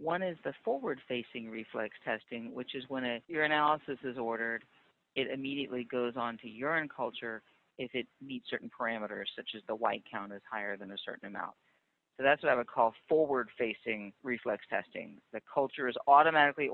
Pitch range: 115-140 Hz